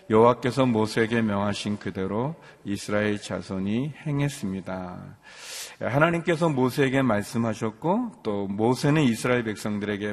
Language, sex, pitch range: Korean, male, 100-130 Hz